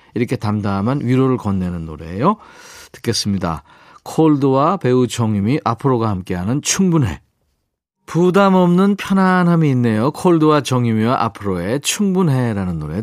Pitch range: 105-165 Hz